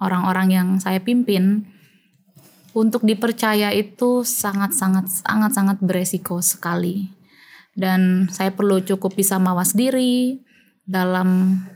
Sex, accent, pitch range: female, native, 185-220 Hz